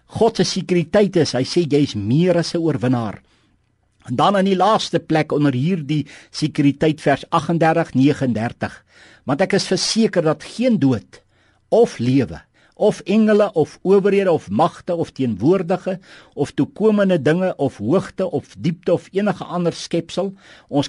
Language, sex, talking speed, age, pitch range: Dutch, male, 145 wpm, 60-79, 135-185 Hz